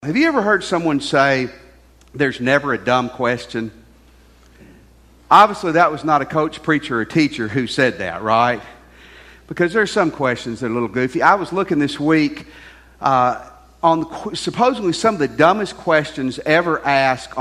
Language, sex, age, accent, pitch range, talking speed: English, male, 50-69, American, 120-170 Hz, 170 wpm